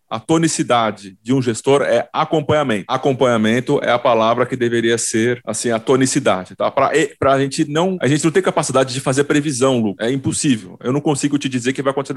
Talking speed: 200 wpm